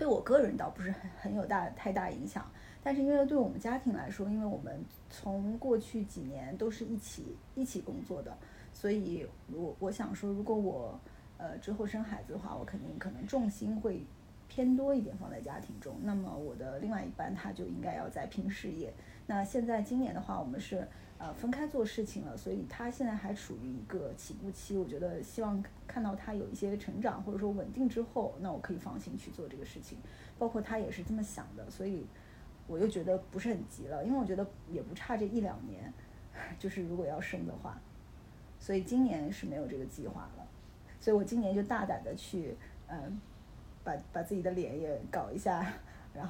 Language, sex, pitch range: Chinese, female, 195-235 Hz